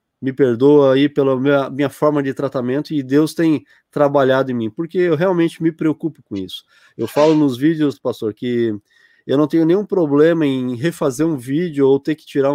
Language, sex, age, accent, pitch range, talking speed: Portuguese, male, 20-39, Brazilian, 130-155 Hz, 195 wpm